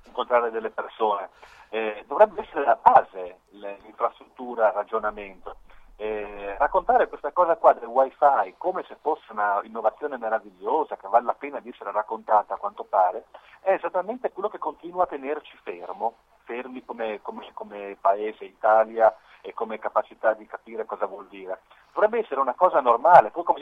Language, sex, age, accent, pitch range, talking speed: Italian, male, 40-59, native, 110-175 Hz, 160 wpm